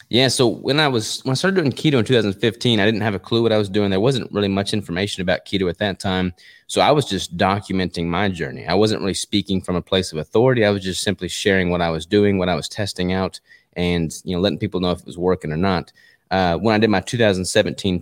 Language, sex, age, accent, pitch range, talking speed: English, male, 20-39, American, 90-105 Hz, 265 wpm